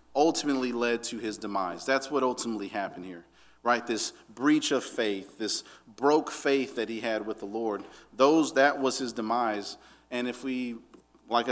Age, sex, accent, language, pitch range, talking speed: 40-59, male, American, English, 115-140 Hz, 170 wpm